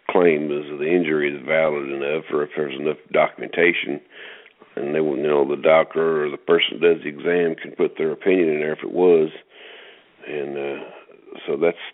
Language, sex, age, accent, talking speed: English, male, 50-69, American, 195 wpm